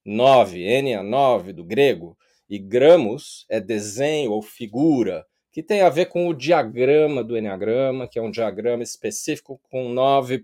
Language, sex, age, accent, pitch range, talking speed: Portuguese, male, 40-59, Brazilian, 130-205 Hz, 160 wpm